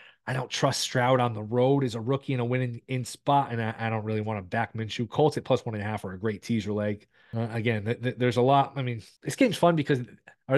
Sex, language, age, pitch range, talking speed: male, English, 30-49, 110-135 Hz, 285 wpm